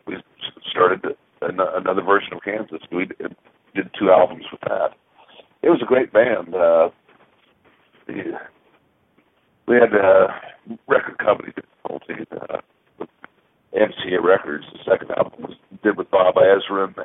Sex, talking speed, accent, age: male, 120 wpm, American, 50-69